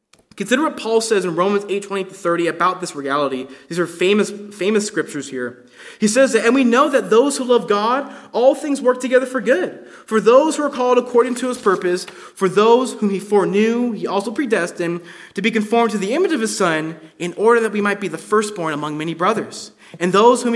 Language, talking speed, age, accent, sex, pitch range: English, 220 wpm, 20-39, American, male, 175-245 Hz